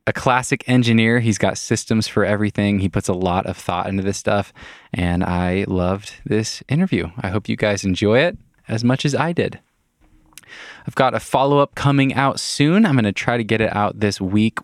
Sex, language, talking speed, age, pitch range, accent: male, English, 205 wpm, 20-39, 95-115 Hz, American